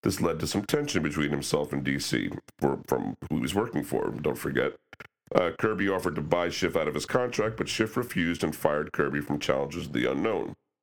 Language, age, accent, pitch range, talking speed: English, 50-69, American, 75-100 Hz, 210 wpm